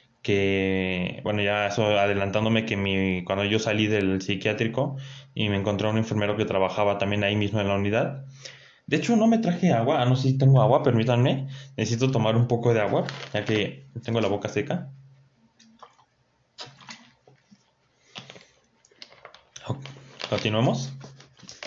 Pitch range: 110-135 Hz